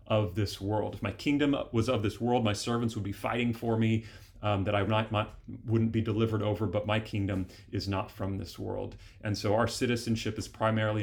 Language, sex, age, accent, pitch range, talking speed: English, male, 30-49, American, 105-125 Hz, 205 wpm